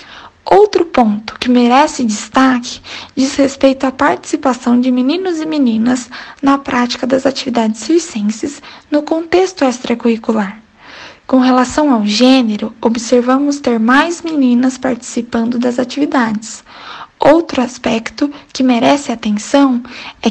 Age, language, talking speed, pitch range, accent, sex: 10-29, Portuguese, 110 wpm, 245-295 Hz, Brazilian, female